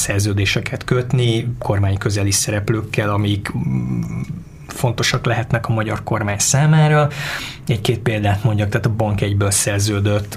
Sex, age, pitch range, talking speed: male, 20-39, 105-125 Hz, 115 wpm